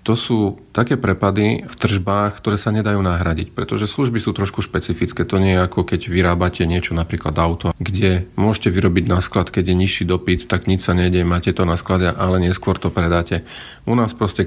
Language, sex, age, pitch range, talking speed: Slovak, male, 40-59, 85-105 Hz, 200 wpm